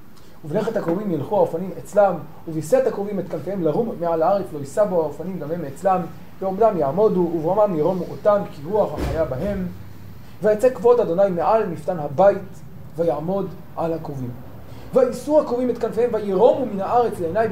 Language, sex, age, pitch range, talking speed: Hebrew, male, 30-49, 150-200 Hz, 135 wpm